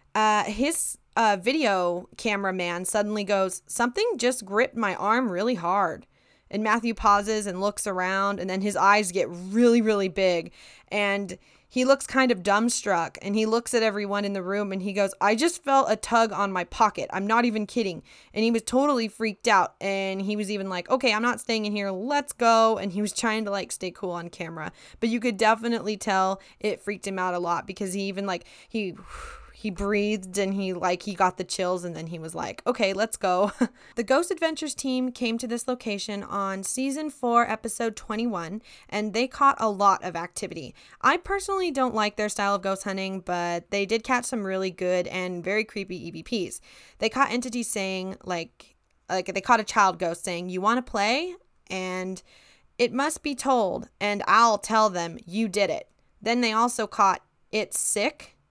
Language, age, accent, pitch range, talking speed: English, 20-39, American, 190-235 Hz, 200 wpm